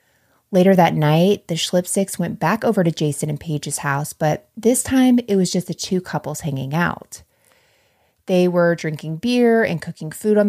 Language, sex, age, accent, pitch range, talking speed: English, female, 30-49, American, 150-205 Hz, 185 wpm